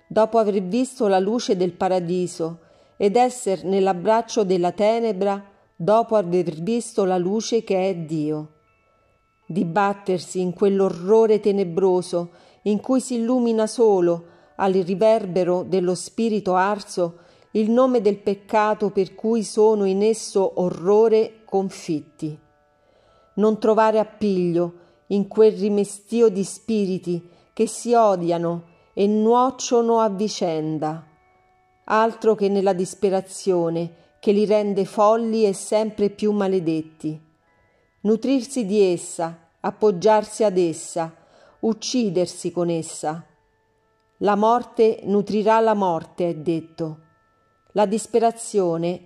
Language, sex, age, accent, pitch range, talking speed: Italian, female, 40-59, native, 170-220 Hz, 110 wpm